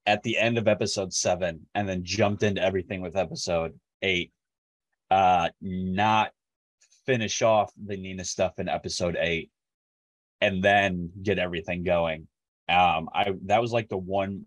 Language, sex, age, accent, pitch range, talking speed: English, male, 30-49, American, 90-115 Hz, 150 wpm